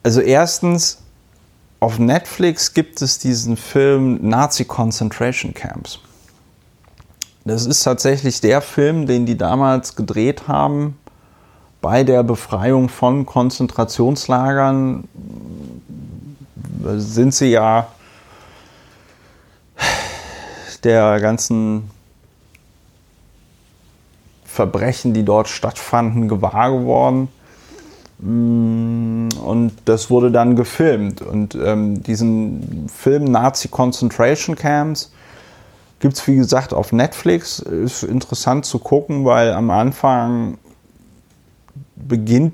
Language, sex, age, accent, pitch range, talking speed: German, male, 30-49, German, 110-130 Hz, 90 wpm